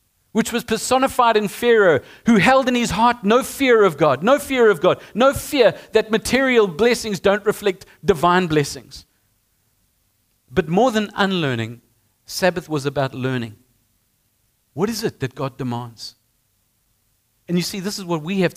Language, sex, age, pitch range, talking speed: English, male, 50-69, 120-180 Hz, 160 wpm